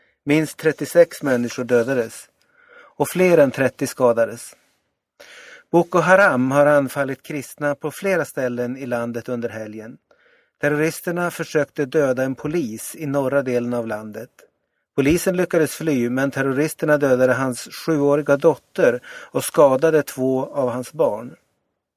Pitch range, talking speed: 130-165 Hz, 125 wpm